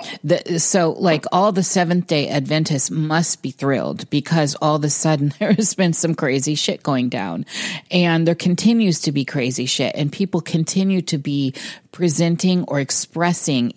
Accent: American